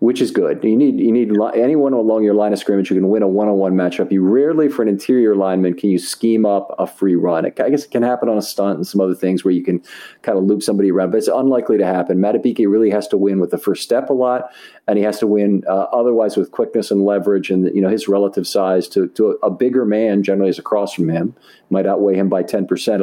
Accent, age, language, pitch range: American, 40-59, English, 95-115 Hz